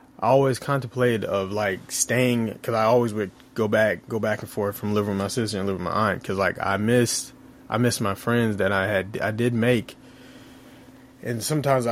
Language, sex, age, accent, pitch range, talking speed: English, male, 20-39, American, 100-120 Hz, 210 wpm